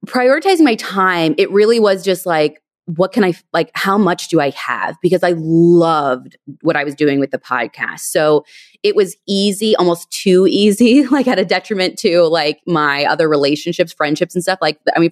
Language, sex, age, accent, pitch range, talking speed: English, female, 20-39, American, 145-190 Hz, 195 wpm